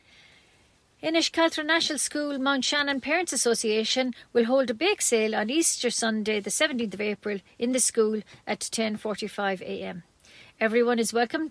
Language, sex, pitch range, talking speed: English, female, 215-260 Hz, 145 wpm